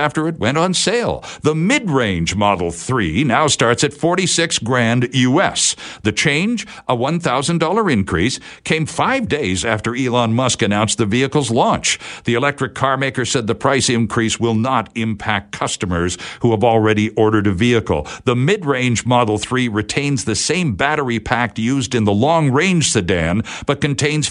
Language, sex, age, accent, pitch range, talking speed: English, male, 60-79, American, 110-150 Hz, 165 wpm